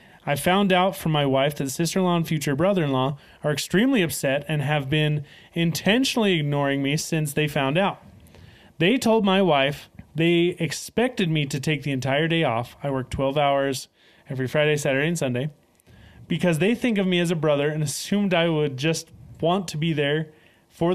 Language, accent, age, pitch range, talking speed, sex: English, American, 30-49, 140-175 Hz, 185 wpm, male